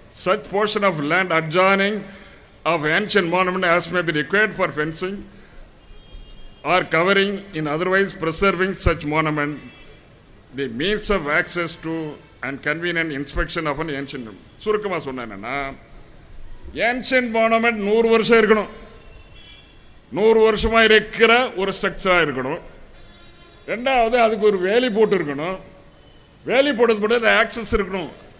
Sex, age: male, 60-79